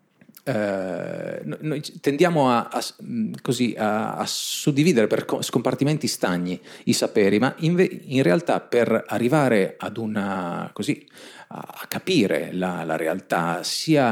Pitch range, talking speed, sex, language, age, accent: 105-155 Hz, 125 wpm, male, Italian, 40-59, native